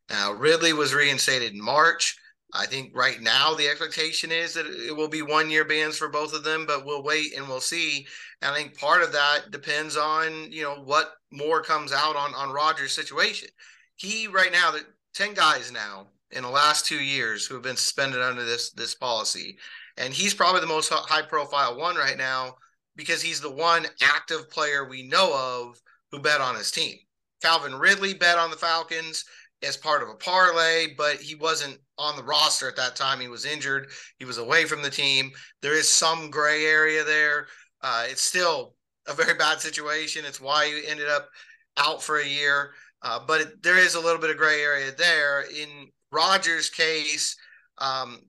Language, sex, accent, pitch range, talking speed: English, male, American, 140-165 Hz, 195 wpm